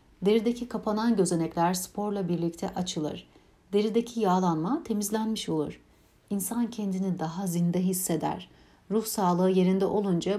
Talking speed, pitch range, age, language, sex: 110 wpm, 170-215 Hz, 60-79, Turkish, female